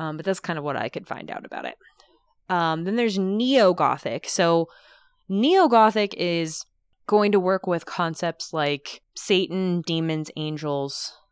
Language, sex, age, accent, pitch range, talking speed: English, female, 20-39, American, 145-175 Hz, 150 wpm